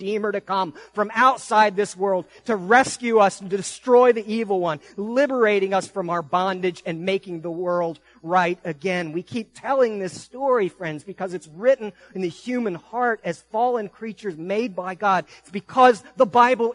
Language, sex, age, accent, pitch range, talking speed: English, male, 40-59, American, 165-220 Hz, 180 wpm